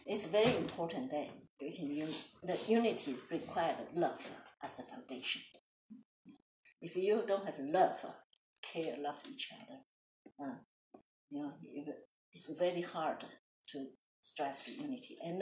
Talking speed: 135 wpm